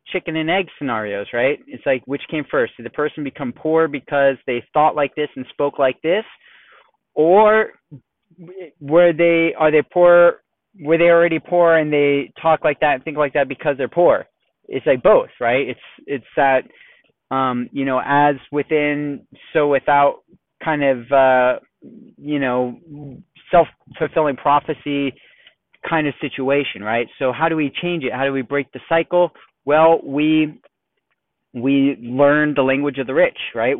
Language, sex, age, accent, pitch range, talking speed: English, male, 30-49, American, 130-155 Hz, 165 wpm